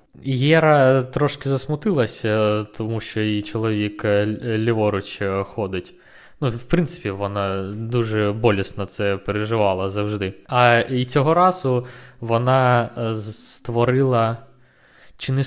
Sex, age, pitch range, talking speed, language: male, 20-39, 110-145 Hz, 100 wpm, Ukrainian